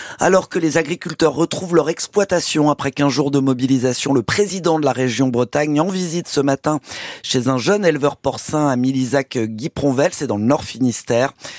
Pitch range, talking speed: 125-165 Hz, 180 wpm